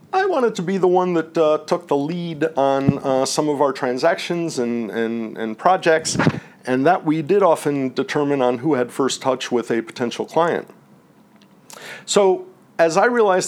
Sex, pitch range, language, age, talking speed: male, 135-165 Hz, English, 50-69, 180 wpm